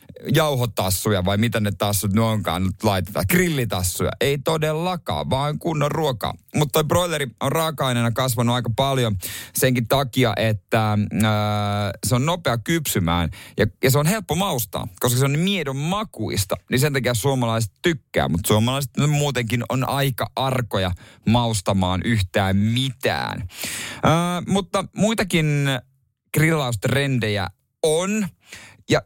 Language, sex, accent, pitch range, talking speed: Finnish, male, native, 105-145 Hz, 130 wpm